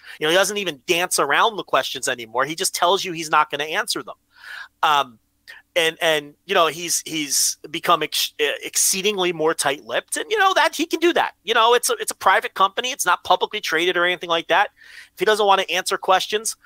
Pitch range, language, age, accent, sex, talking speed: 170-235 Hz, English, 30-49, American, male, 230 wpm